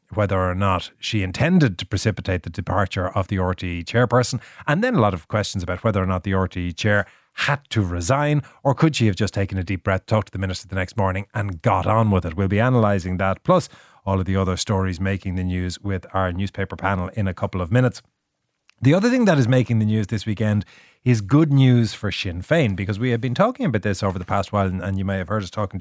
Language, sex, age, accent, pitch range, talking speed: English, male, 30-49, Irish, 95-120 Hz, 245 wpm